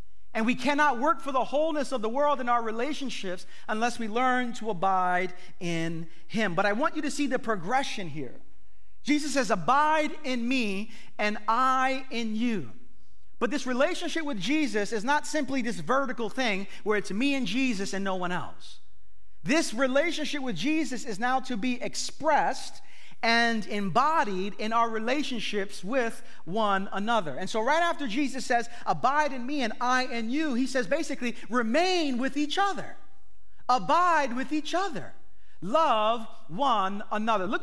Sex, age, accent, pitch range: male, 40-59, American, 215-285 Hz